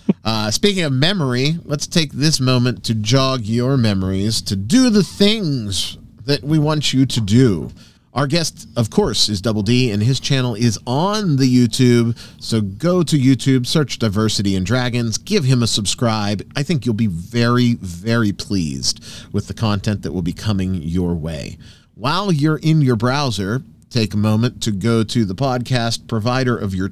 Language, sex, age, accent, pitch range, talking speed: English, male, 30-49, American, 110-140 Hz, 180 wpm